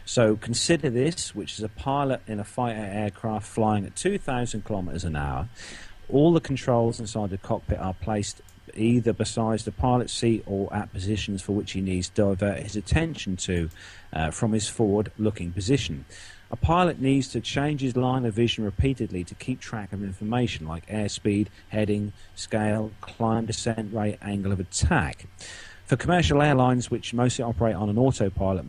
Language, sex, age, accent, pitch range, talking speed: English, male, 40-59, British, 95-120 Hz, 170 wpm